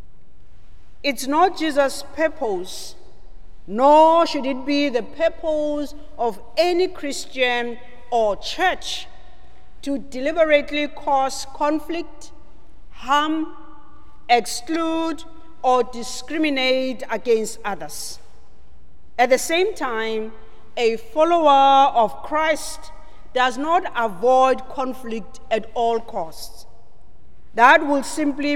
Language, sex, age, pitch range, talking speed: English, female, 40-59, 240-310 Hz, 90 wpm